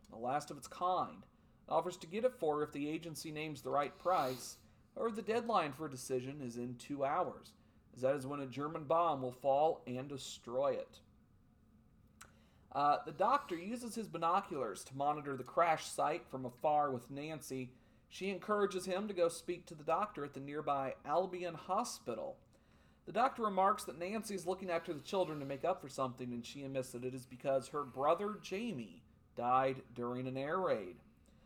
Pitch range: 130-180 Hz